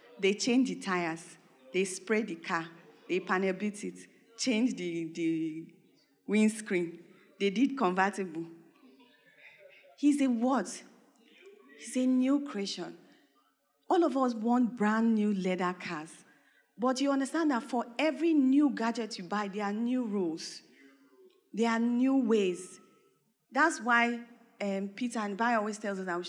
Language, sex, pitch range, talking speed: English, female, 190-260 Hz, 140 wpm